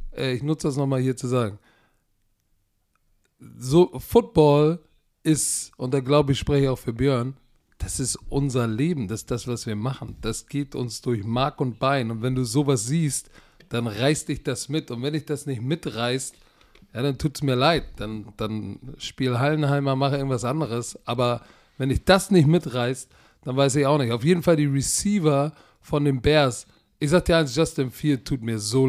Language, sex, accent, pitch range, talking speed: German, male, German, 125-155 Hz, 195 wpm